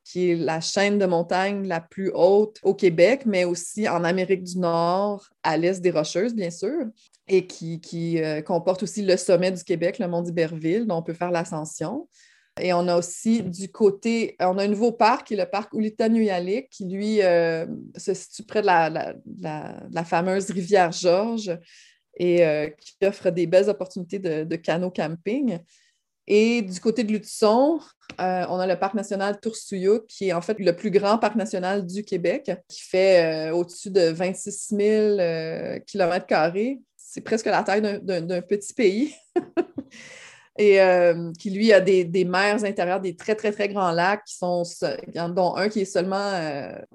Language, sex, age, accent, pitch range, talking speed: French, female, 30-49, Canadian, 175-210 Hz, 190 wpm